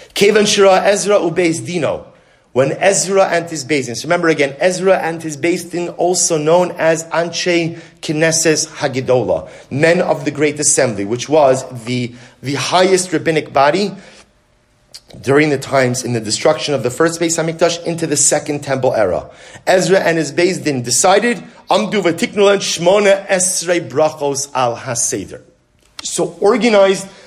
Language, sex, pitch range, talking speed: English, male, 130-170 Hz, 145 wpm